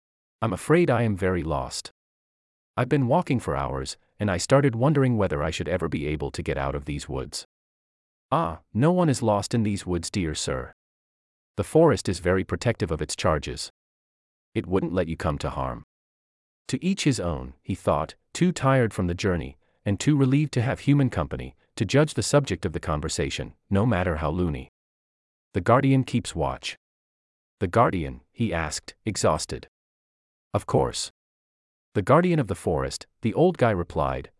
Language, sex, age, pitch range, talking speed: English, male, 30-49, 75-125 Hz, 175 wpm